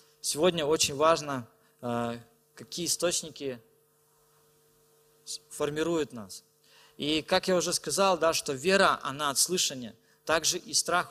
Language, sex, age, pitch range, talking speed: Russian, male, 20-39, 140-160 Hz, 115 wpm